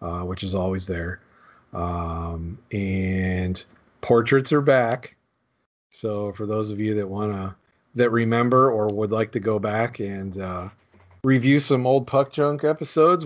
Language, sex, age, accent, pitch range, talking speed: English, male, 40-59, American, 100-120 Hz, 150 wpm